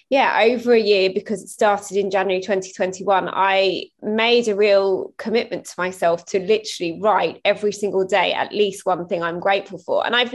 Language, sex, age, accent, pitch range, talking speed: English, female, 20-39, British, 185-215 Hz, 185 wpm